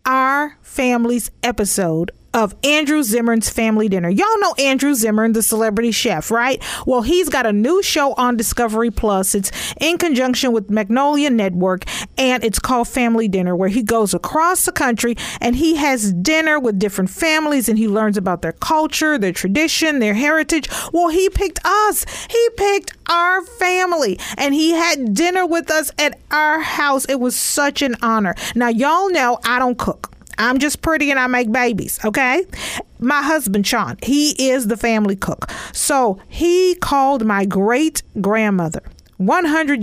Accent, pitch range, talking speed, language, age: American, 210-290 Hz, 165 wpm, English, 40-59